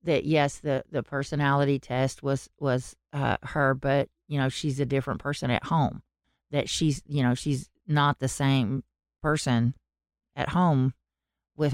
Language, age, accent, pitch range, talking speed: English, 40-59, American, 130-165 Hz, 160 wpm